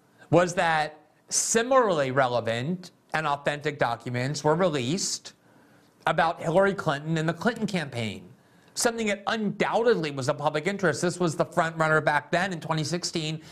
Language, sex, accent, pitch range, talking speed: English, male, American, 145-185 Hz, 140 wpm